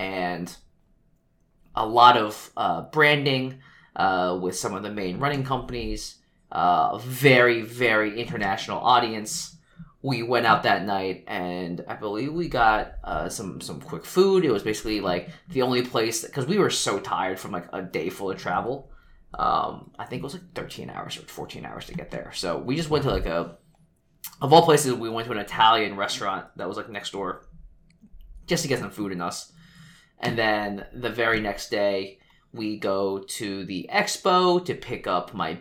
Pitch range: 95-145 Hz